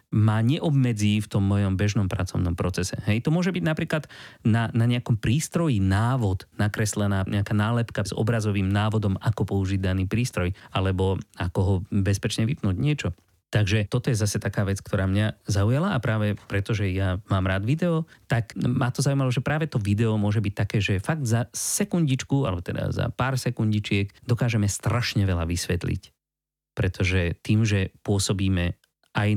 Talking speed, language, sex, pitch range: 165 wpm, Slovak, male, 100-125 Hz